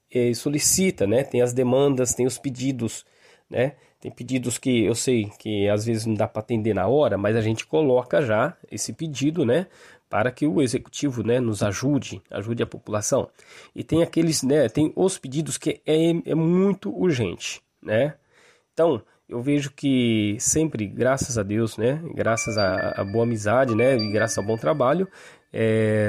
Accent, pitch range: Brazilian, 110-140 Hz